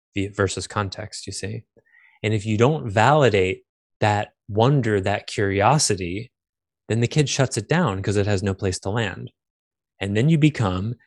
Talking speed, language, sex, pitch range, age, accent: 165 wpm, English, male, 95-130 Hz, 20-39, American